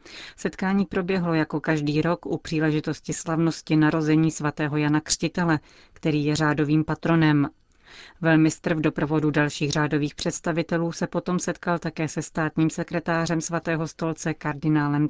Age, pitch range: 30-49, 155-170 Hz